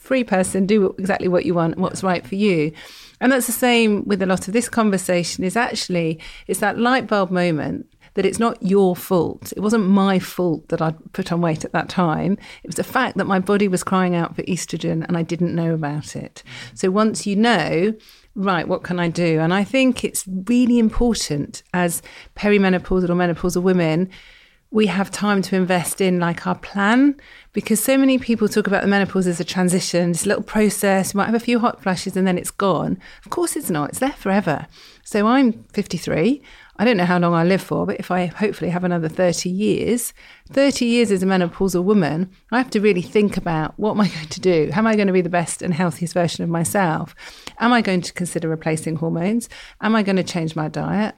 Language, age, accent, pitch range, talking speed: English, 40-59, British, 175-210 Hz, 225 wpm